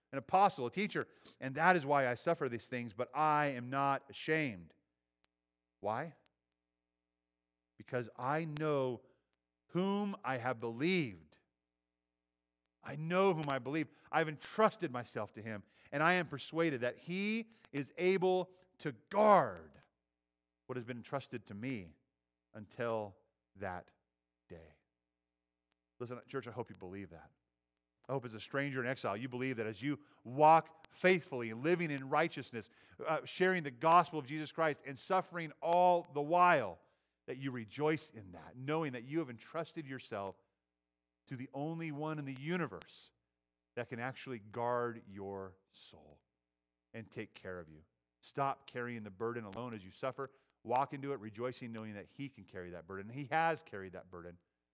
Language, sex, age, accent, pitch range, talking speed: English, male, 40-59, American, 90-150 Hz, 155 wpm